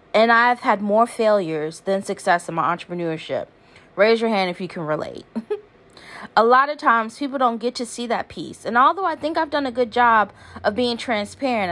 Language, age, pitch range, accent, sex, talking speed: English, 30-49, 175-230 Hz, American, female, 205 wpm